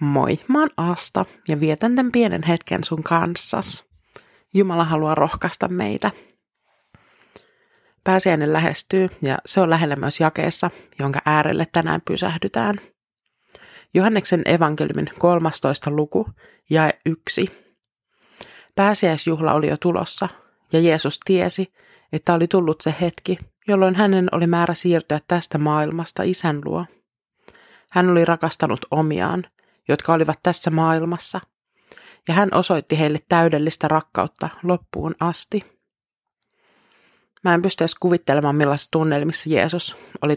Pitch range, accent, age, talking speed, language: 155-180 Hz, native, 30-49, 115 wpm, Finnish